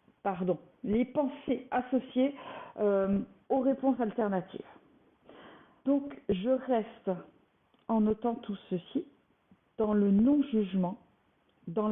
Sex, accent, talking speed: female, French, 95 wpm